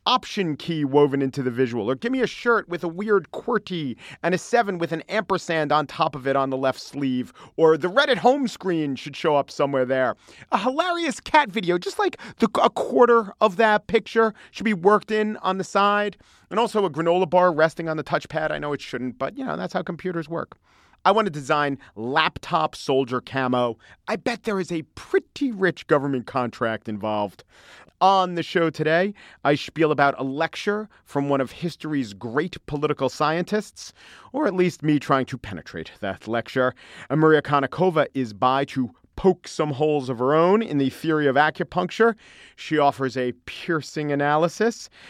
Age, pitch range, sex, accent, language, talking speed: 40-59, 140-200 Hz, male, American, English, 190 wpm